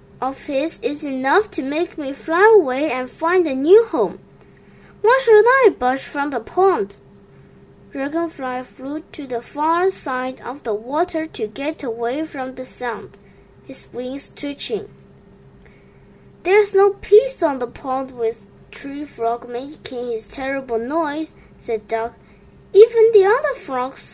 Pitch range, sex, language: 260-370 Hz, female, Chinese